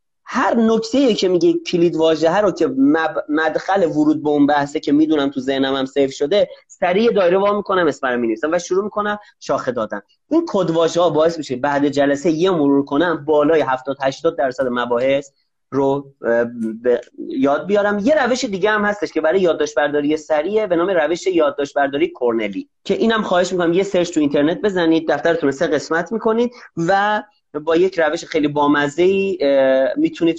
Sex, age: male, 30-49